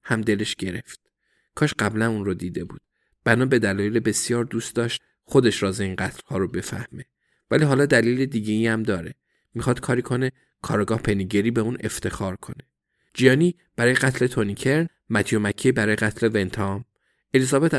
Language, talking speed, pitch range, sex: Persian, 150 wpm, 100-120 Hz, male